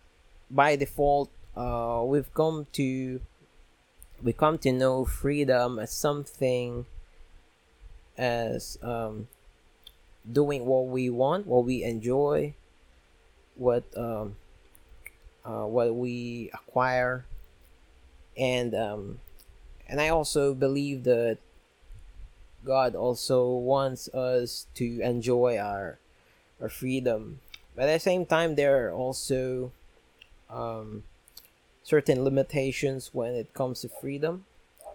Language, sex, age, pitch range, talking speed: English, male, 20-39, 85-130 Hz, 105 wpm